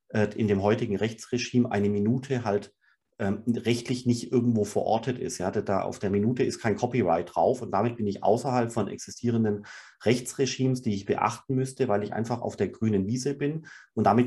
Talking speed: 175 wpm